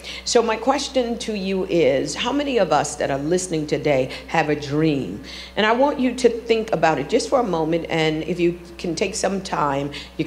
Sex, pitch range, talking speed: female, 155-185 Hz, 215 wpm